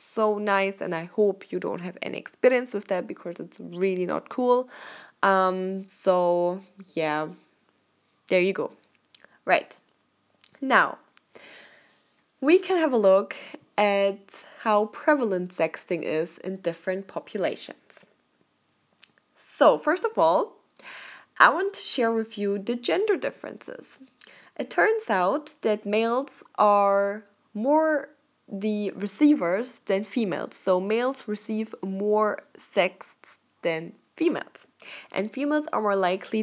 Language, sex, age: English, female, 20-39